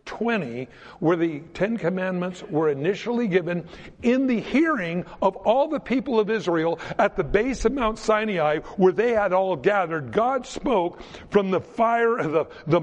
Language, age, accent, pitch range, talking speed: English, 60-79, American, 165-225 Hz, 170 wpm